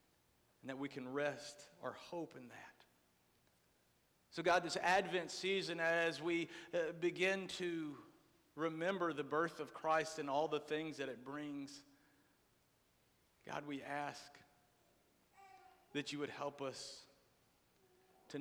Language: English